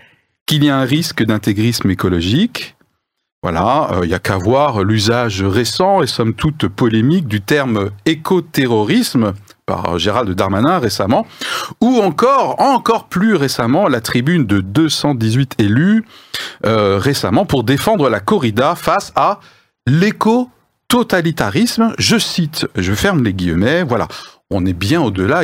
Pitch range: 105-155 Hz